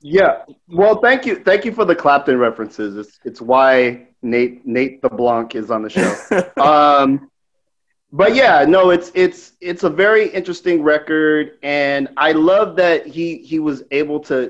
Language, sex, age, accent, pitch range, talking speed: English, male, 30-49, American, 125-165 Hz, 170 wpm